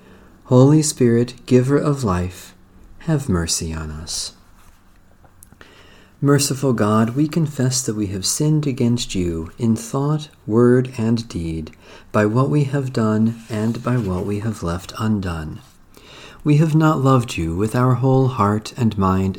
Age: 40-59